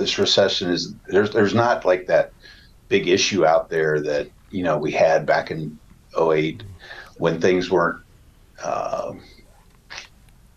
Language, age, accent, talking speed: English, 50-69, American, 135 wpm